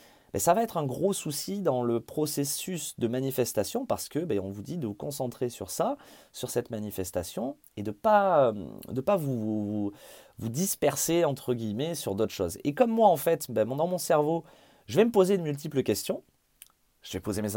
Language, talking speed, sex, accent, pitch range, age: French, 200 wpm, male, French, 115-180 Hz, 30-49